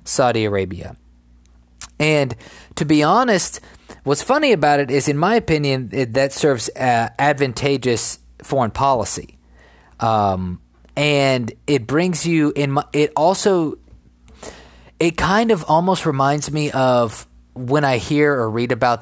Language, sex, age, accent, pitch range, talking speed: English, male, 30-49, American, 110-145 Hz, 130 wpm